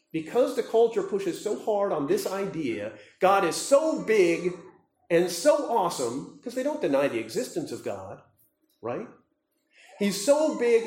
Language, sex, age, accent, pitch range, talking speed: English, male, 40-59, American, 175-295 Hz, 155 wpm